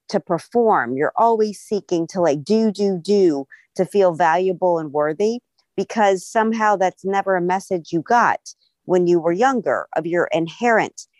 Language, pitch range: English, 170-210 Hz